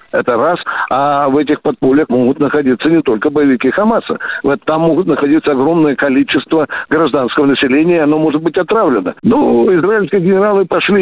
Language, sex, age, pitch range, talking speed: Russian, male, 60-79, 145-210 Hz, 150 wpm